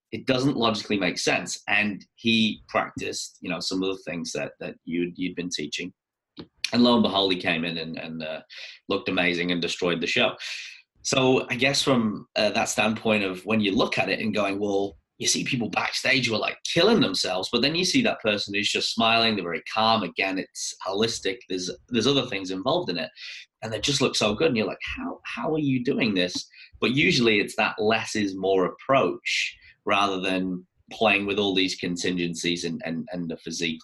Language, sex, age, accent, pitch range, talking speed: English, male, 30-49, British, 90-115 Hz, 210 wpm